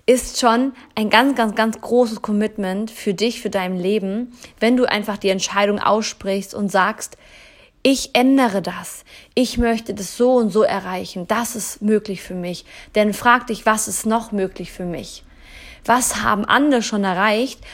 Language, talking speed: German, 170 wpm